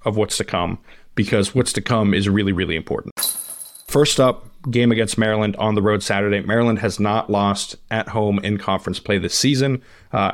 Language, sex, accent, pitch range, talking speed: English, male, American, 100-115 Hz, 190 wpm